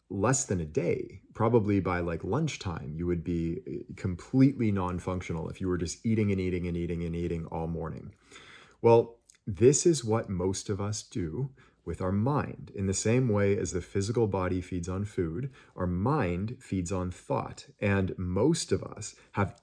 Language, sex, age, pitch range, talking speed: English, male, 30-49, 90-110 Hz, 175 wpm